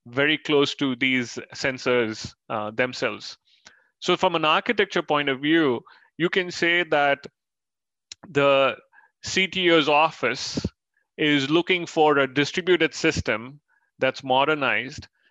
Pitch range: 140-170 Hz